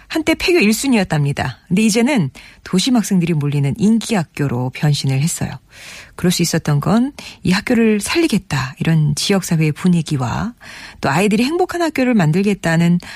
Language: Korean